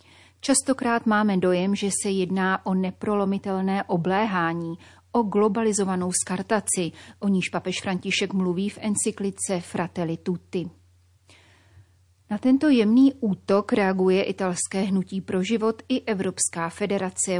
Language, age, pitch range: Czech, 30-49, 175-205 Hz